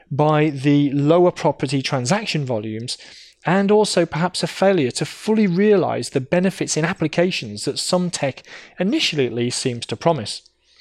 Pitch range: 130-175 Hz